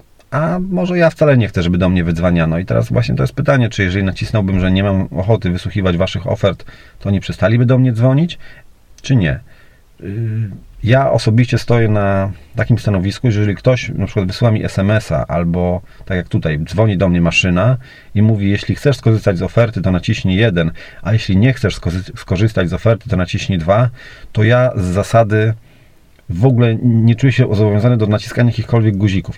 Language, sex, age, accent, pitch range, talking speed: Polish, male, 40-59, native, 95-120 Hz, 185 wpm